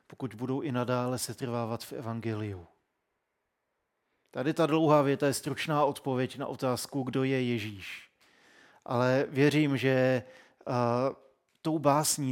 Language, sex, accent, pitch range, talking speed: Czech, male, native, 120-140 Hz, 125 wpm